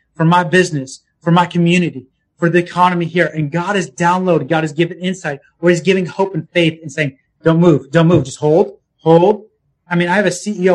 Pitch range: 160-185 Hz